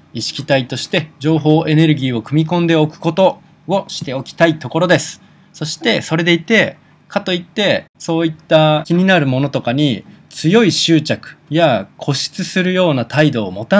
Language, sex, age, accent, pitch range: Japanese, male, 20-39, native, 130-170 Hz